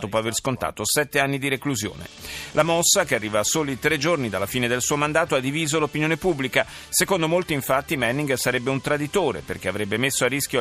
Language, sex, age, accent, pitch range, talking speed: Italian, male, 40-59, native, 110-150 Hz, 205 wpm